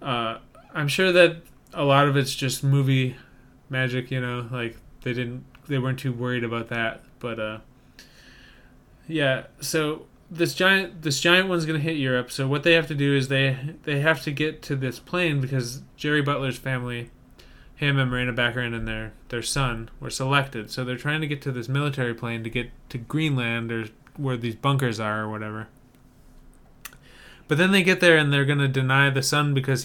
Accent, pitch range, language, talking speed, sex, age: American, 125-145 Hz, English, 190 wpm, male, 20-39